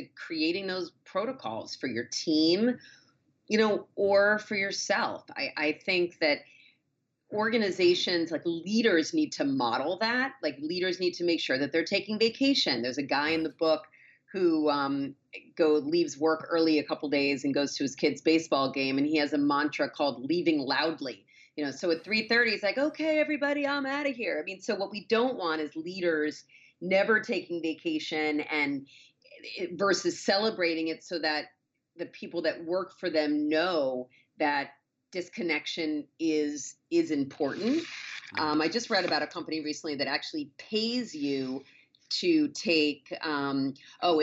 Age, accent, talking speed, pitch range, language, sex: 30-49, American, 165 wpm, 150-225 Hz, English, female